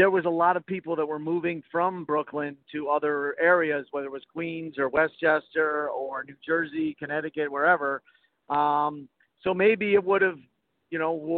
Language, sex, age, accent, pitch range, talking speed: English, male, 50-69, American, 145-170 Hz, 180 wpm